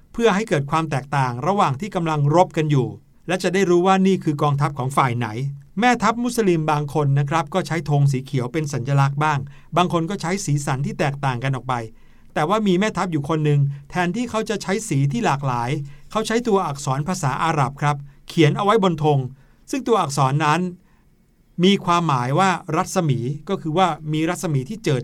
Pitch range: 145-190 Hz